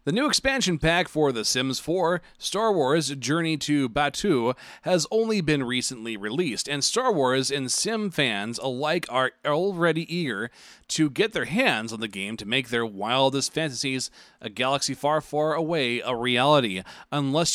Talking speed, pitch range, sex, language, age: 165 wpm, 130-170 Hz, male, English, 30-49